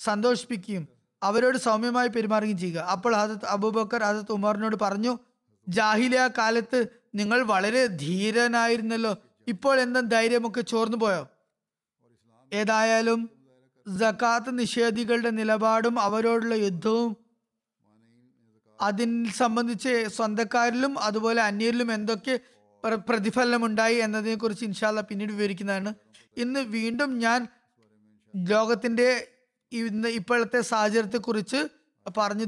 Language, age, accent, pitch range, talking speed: Malayalam, 20-39, native, 210-245 Hz, 85 wpm